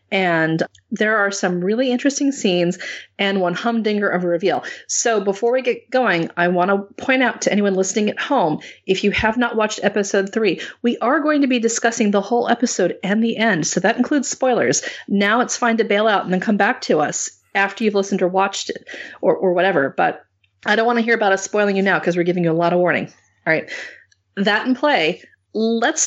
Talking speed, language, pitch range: 225 wpm, English, 180-230 Hz